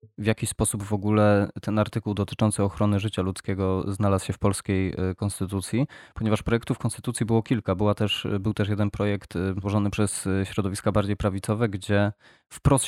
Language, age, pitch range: Polish, 20-39, 100-110 Hz